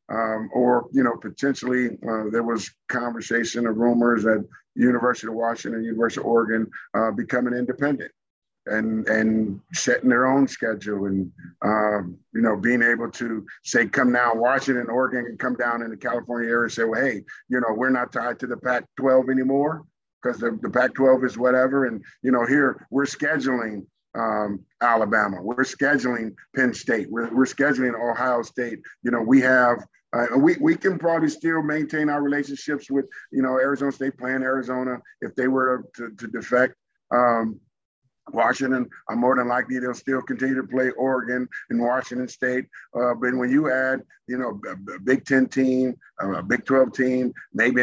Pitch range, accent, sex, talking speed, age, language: 120-135 Hz, American, male, 180 wpm, 50-69, English